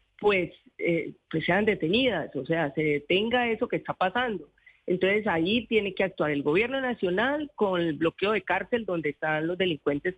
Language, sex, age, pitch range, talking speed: Spanish, female, 40-59, 165-210 Hz, 175 wpm